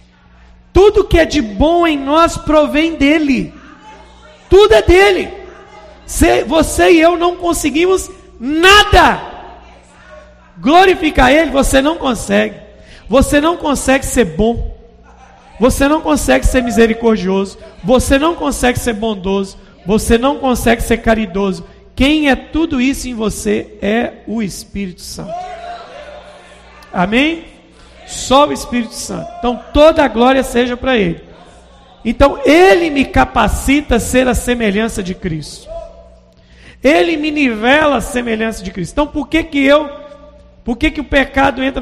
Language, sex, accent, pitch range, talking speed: Portuguese, male, Brazilian, 215-295 Hz, 135 wpm